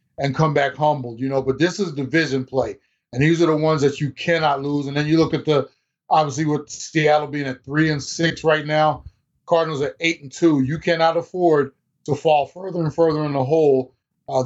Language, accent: English, American